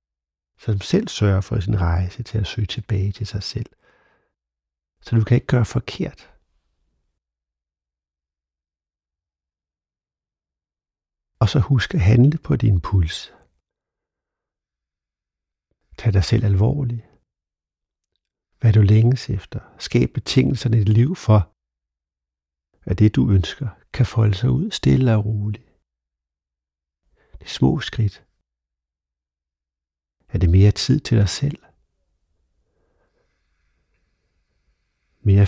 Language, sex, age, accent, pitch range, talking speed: Danish, male, 60-79, native, 70-110 Hz, 110 wpm